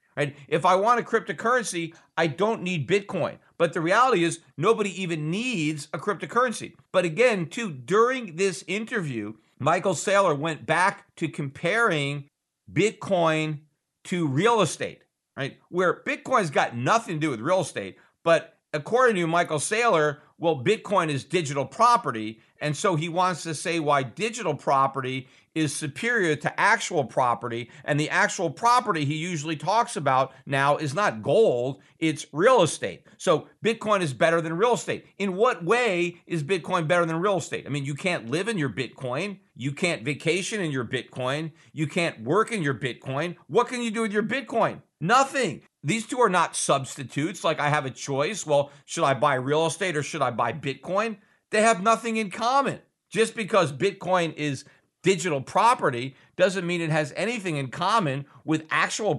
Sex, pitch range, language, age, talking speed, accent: male, 145-200 Hz, English, 50-69, 170 wpm, American